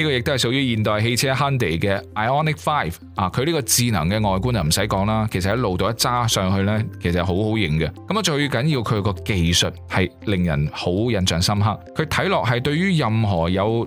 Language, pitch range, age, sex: Chinese, 95-130 Hz, 20-39, male